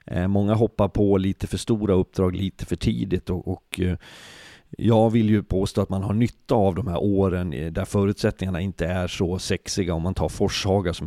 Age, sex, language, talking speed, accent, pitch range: 40-59, male, Swedish, 190 wpm, native, 90-105 Hz